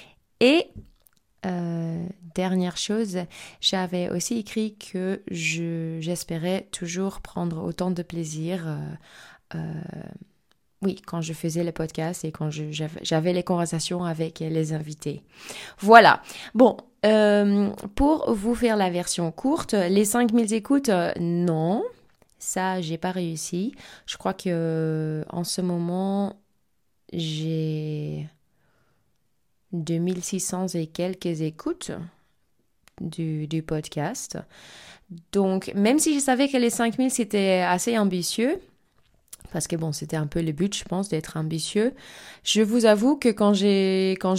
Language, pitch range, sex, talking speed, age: French, 165-200 Hz, female, 125 wpm, 20-39